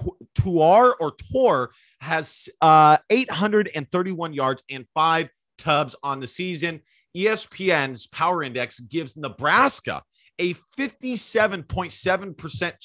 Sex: male